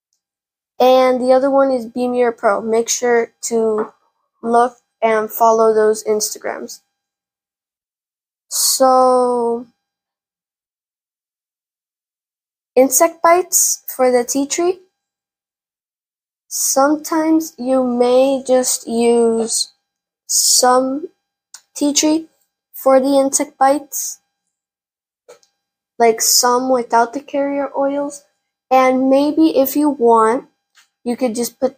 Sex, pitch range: female, 230-275 Hz